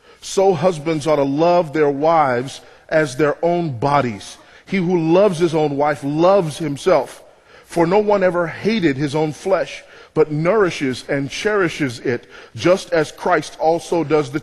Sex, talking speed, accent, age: male, 160 wpm, American, 40-59